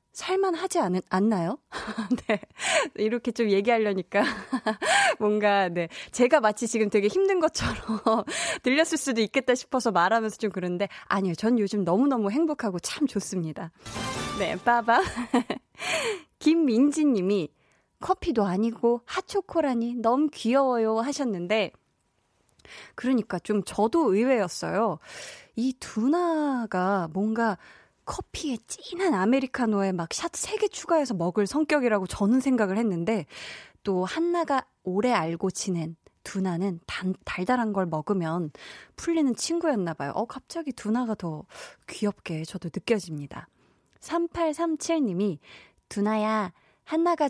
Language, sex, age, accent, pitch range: Korean, female, 20-39, native, 195-275 Hz